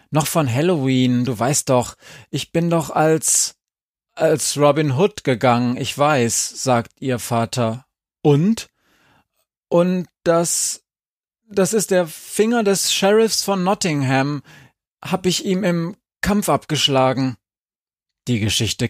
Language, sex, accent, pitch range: German, male, German, 115-145 Hz